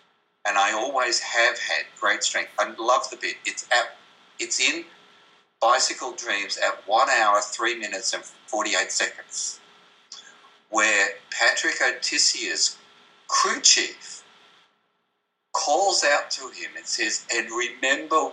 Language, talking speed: English, 125 wpm